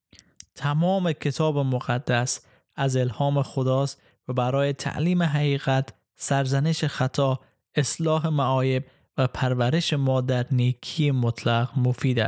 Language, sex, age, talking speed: Persian, male, 20-39, 100 wpm